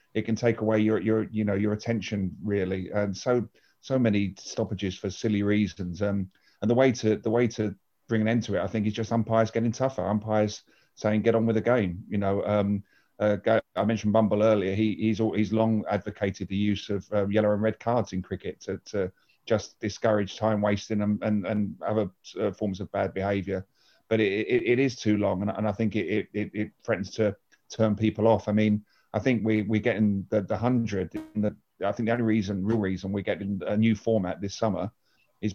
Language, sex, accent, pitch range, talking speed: English, male, British, 100-115 Hz, 220 wpm